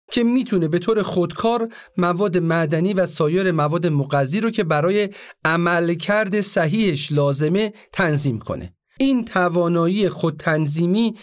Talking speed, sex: 125 wpm, male